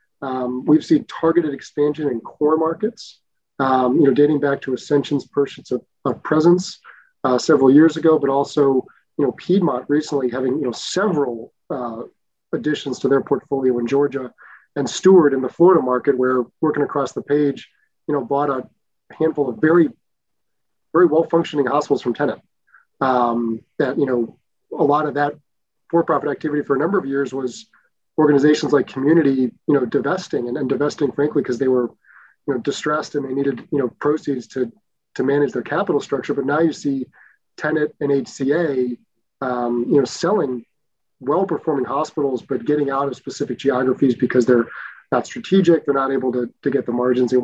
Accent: American